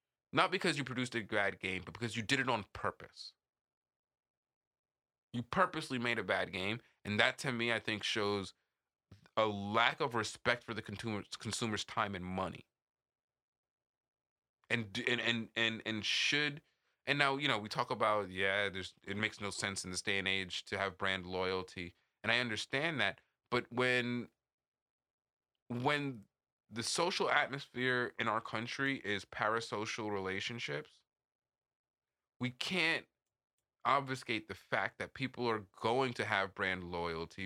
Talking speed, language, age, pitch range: 150 wpm, English, 20-39, 95-120 Hz